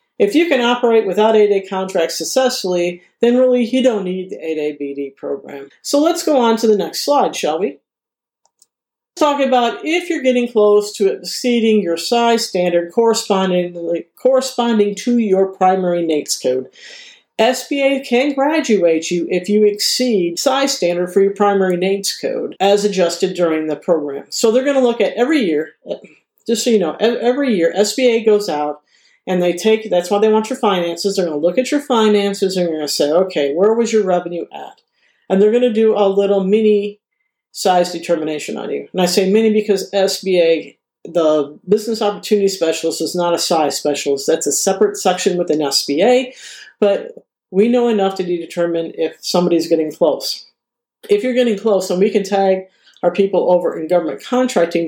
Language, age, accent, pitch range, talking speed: English, 50-69, American, 175-240 Hz, 175 wpm